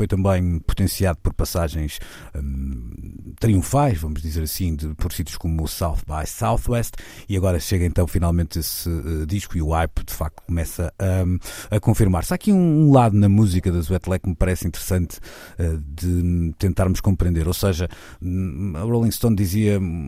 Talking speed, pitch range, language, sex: 175 wpm, 85-100 Hz, Portuguese, male